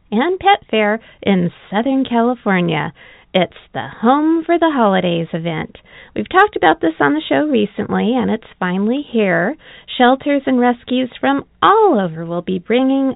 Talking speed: 155 wpm